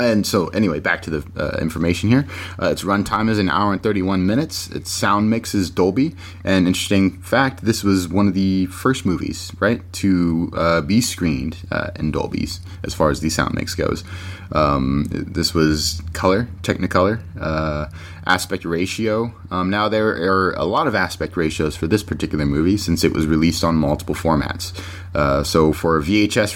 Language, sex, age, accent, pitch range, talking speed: English, male, 30-49, American, 80-95 Hz, 185 wpm